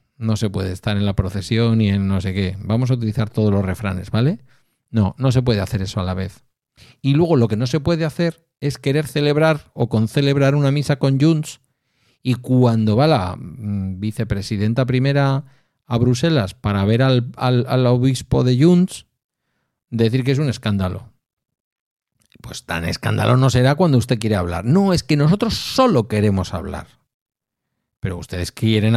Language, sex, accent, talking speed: Spanish, male, Spanish, 175 wpm